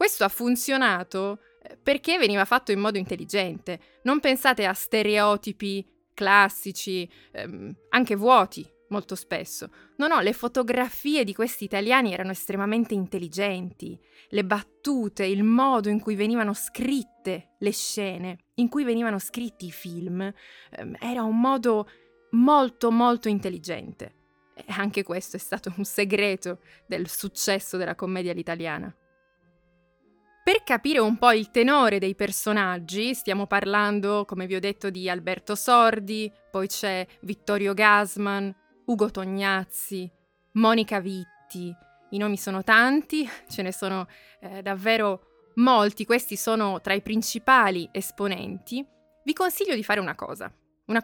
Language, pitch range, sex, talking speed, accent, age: Italian, 190-235 Hz, female, 130 wpm, native, 20-39